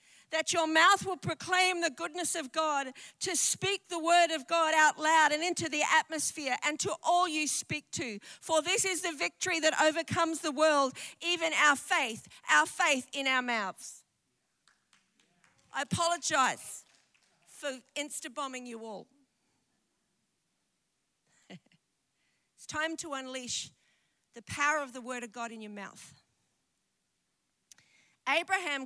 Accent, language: Australian, English